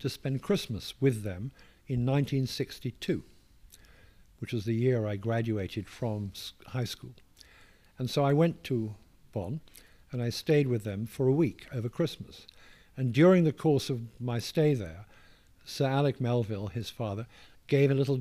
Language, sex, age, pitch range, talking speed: English, male, 60-79, 105-140 Hz, 160 wpm